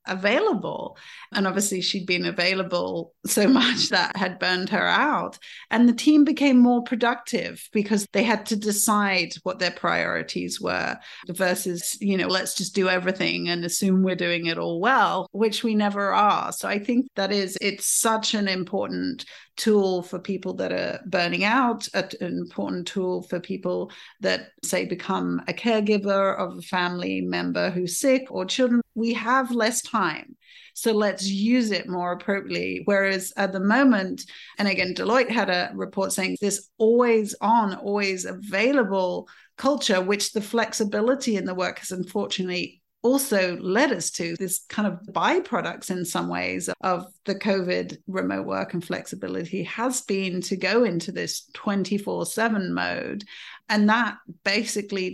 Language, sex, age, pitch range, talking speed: English, female, 40-59, 180-220 Hz, 160 wpm